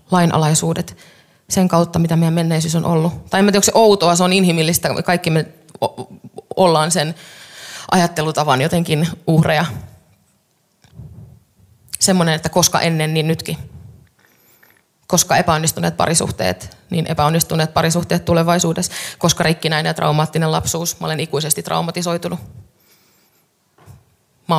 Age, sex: 20-39, female